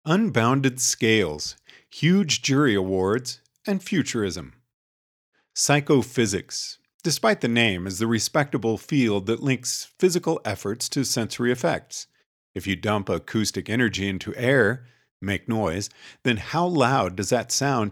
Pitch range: 100-140 Hz